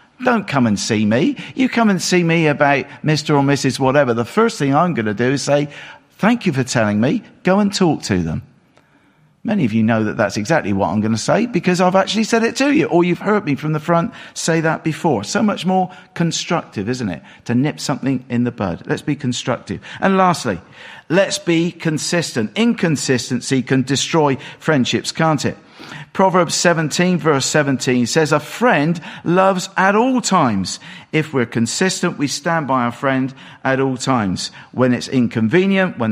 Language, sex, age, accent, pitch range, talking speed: English, male, 50-69, British, 120-180 Hz, 190 wpm